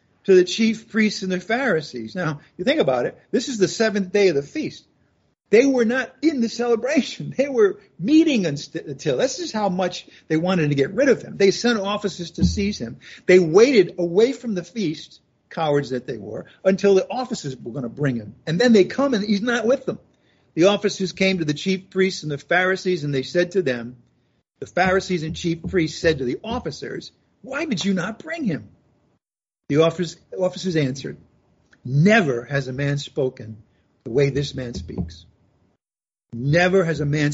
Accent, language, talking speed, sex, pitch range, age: American, English, 195 wpm, male, 140-200 Hz, 50-69